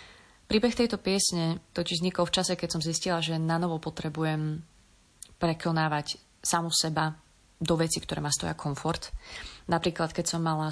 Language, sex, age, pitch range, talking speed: Slovak, female, 30-49, 155-180 Hz, 150 wpm